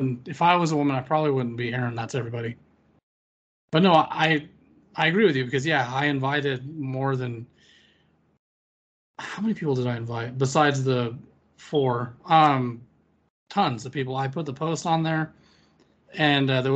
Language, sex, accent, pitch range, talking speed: English, male, American, 125-150 Hz, 170 wpm